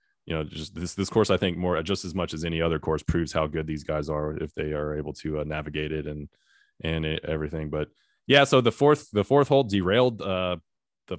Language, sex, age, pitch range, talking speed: English, male, 20-39, 85-110 Hz, 240 wpm